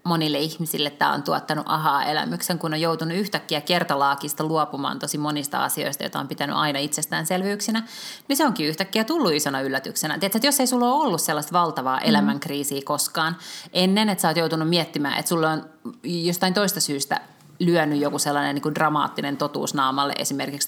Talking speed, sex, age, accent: 165 wpm, female, 30-49, native